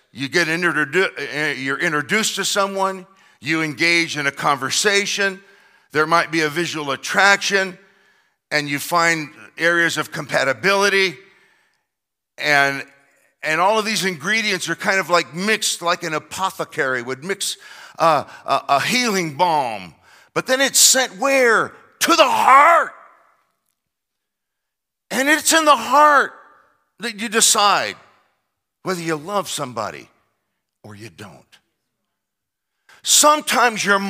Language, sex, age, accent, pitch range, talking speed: English, male, 50-69, American, 155-245 Hz, 120 wpm